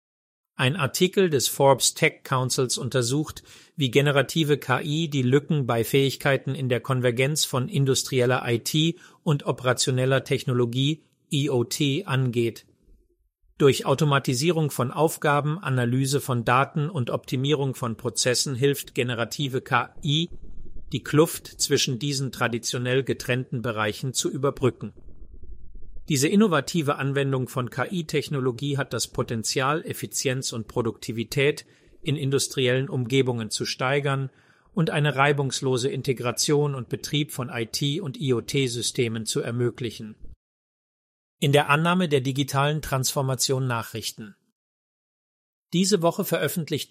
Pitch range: 125-145 Hz